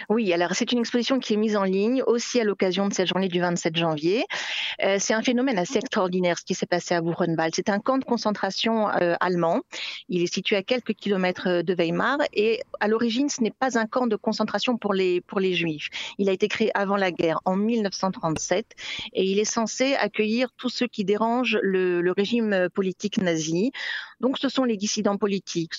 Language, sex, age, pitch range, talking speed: French, female, 40-59, 180-235 Hz, 210 wpm